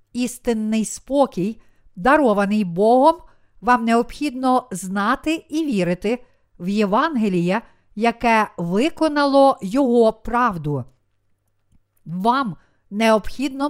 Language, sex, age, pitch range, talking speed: Ukrainian, female, 50-69, 190-255 Hz, 75 wpm